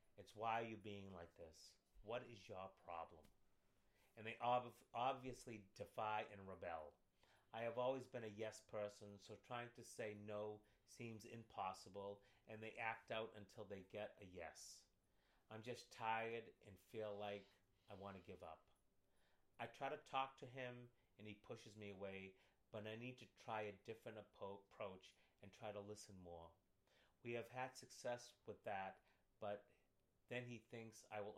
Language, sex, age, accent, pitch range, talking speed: English, male, 30-49, American, 95-115 Hz, 165 wpm